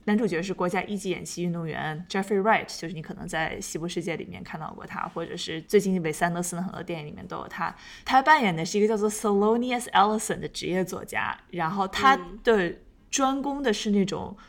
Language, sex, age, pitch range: Chinese, female, 20-39, 180-225 Hz